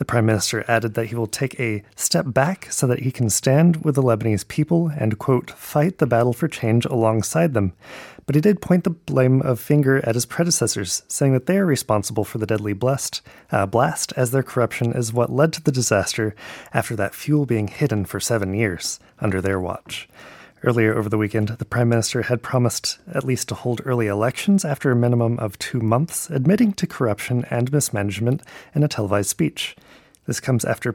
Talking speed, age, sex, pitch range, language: 200 wpm, 30-49, male, 110-135 Hz, English